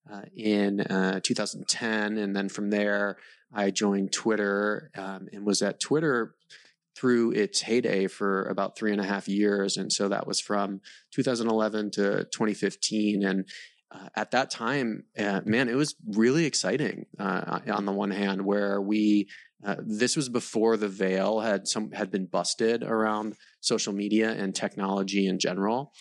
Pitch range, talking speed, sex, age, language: 100-115 Hz, 160 wpm, male, 20-39, English